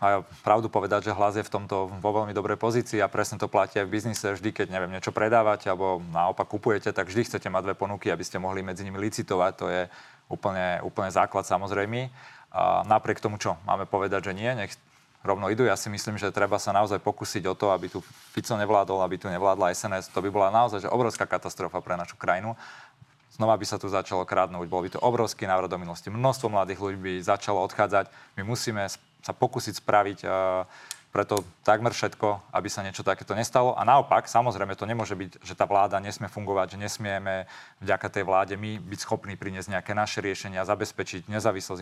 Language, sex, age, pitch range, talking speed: Slovak, male, 30-49, 95-110 Hz, 200 wpm